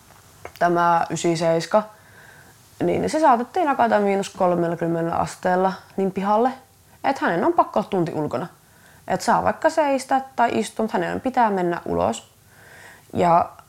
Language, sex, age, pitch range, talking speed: Finnish, female, 20-39, 160-205 Hz, 125 wpm